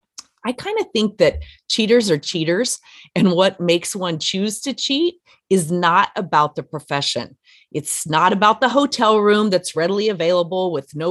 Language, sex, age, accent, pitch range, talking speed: English, female, 30-49, American, 160-230 Hz, 165 wpm